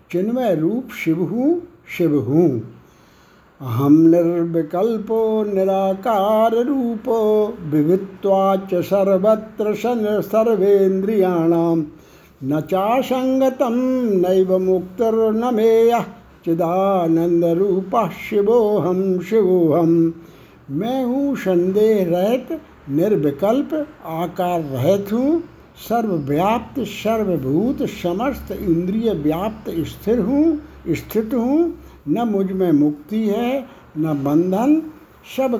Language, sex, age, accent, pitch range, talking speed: Hindi, male, 60-79, native, 165-230 Hz, 70 wpm